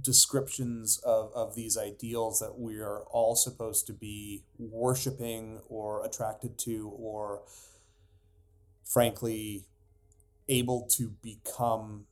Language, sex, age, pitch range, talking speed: English, male, 30-49, 105-125 Hz, 105 wpm